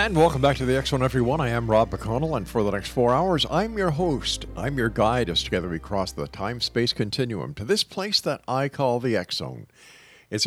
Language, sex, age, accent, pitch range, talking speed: English, male, 50-69, American, 95-130 Hz, 225 wpm